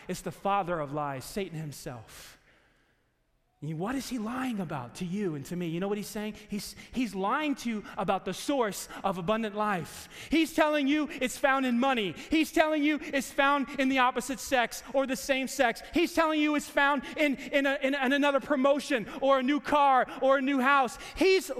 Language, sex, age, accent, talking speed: English, male, 30-49, American, 200 wpm